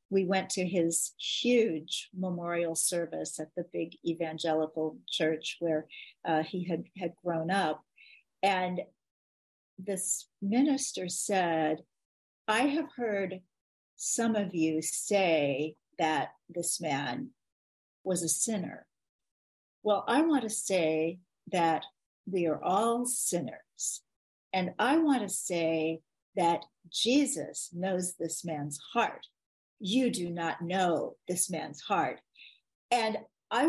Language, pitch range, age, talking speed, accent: English, 170-220 Hz, 50-69, 120 wpm, American